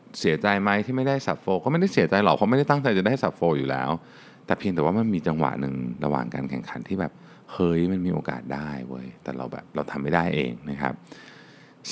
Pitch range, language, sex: 70-100 Hz, Thai, male